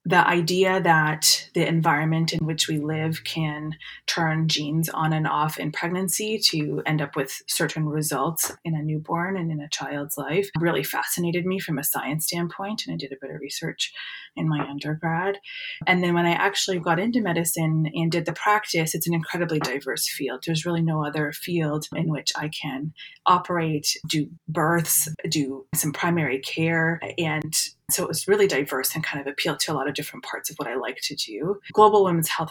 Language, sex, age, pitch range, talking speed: English, female, 20-39, 150-170 Hz, 195 wpm